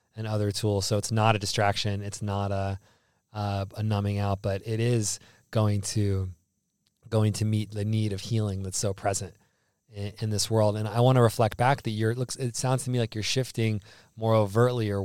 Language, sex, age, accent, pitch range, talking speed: English, male, 20-39, American, 105-120 Hz, 215 wpm